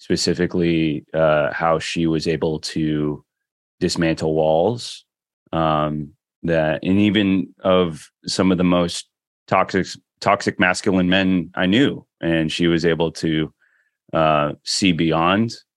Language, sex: English, male